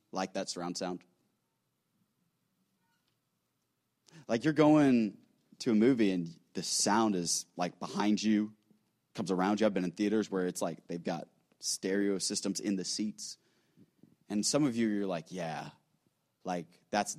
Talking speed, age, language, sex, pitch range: 150 wpm, 30-49, English, male, 120-190 Hz